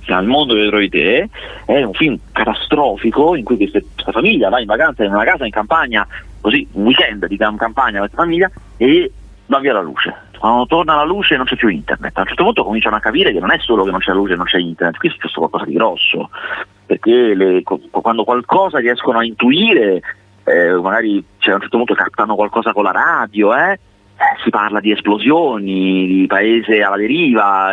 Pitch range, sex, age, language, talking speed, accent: 105-155 Hz, male, 30-49, Italian, 205 wpm, native